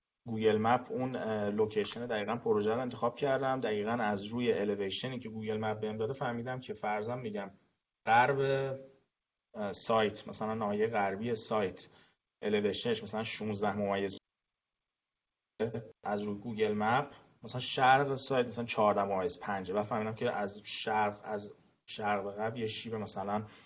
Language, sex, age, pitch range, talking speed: Persian, male, 30-49, 105-130 Hz, 135 wpm